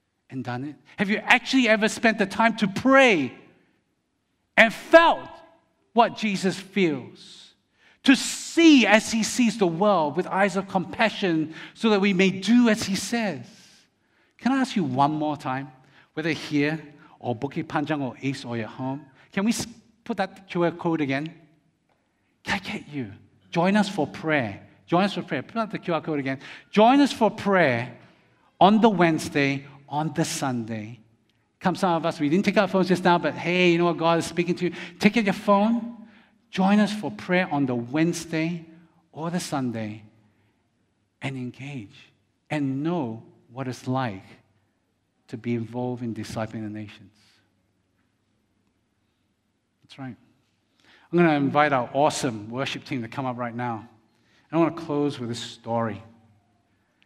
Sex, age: male, 50-69